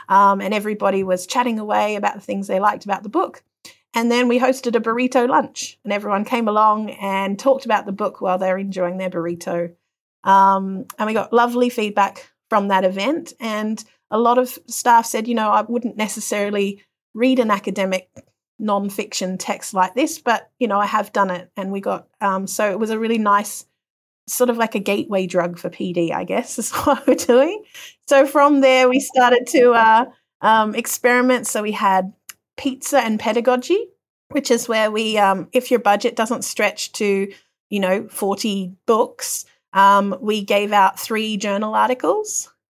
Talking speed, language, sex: 185 wpm, English, female